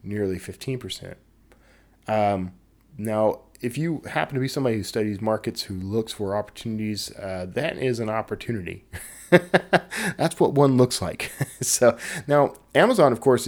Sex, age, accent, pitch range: male, 20-39, American, 100-130 Hz